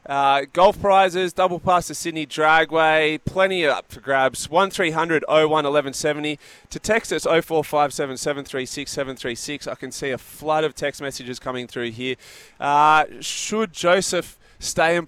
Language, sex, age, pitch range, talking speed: English, male, 20-39, 140-170 Hz, 140 wpm